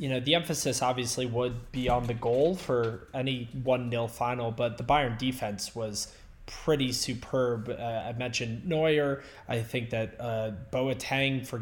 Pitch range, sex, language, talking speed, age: 115-140 Hz, male, English, 165 wpm, 20-39